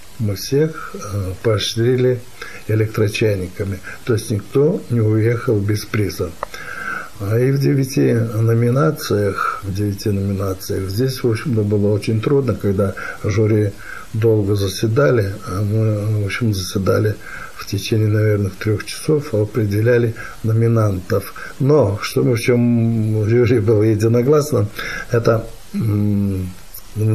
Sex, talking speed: male, 115 wpm